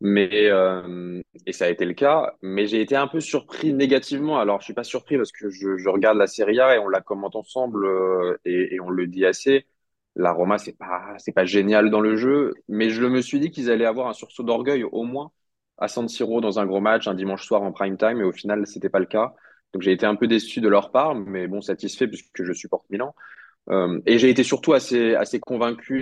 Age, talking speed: 20-39, 245 wpm